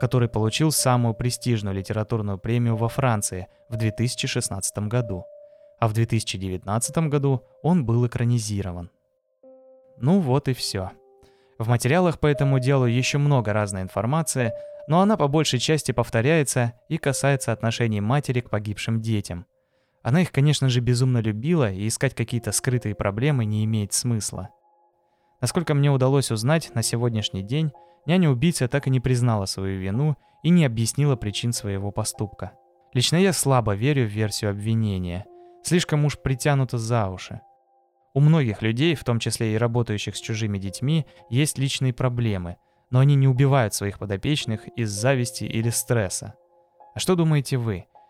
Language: Russian